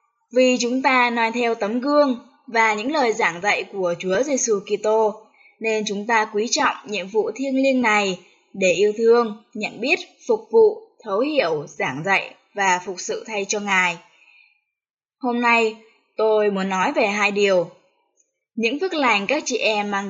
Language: Vietnamese